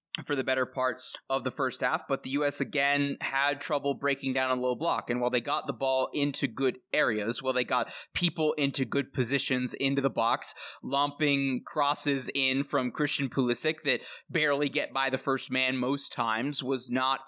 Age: 20-39